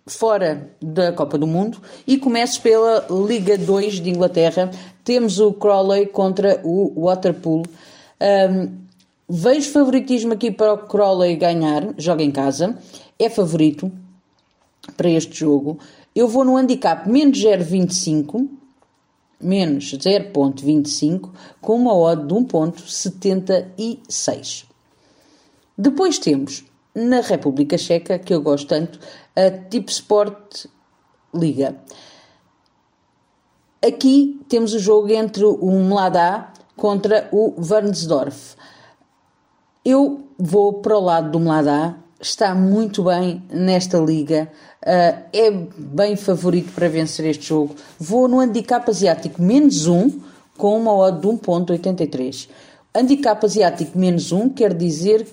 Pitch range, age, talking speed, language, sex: 165-215 Hz, 40-59, 115 wpm, Portuguese, female